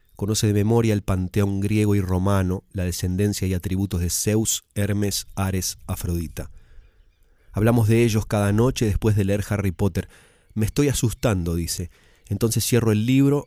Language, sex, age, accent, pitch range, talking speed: Spanish, male, 30-49, Argentinian, 90-105 Hz, 155 wpm